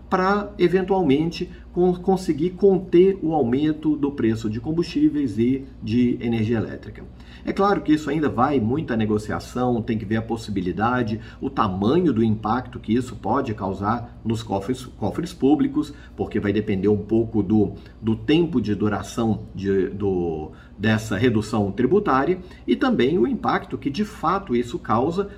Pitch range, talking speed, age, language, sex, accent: 105-140 Hz, 145 wpm, 50-69, Portuguese, male, Brazilian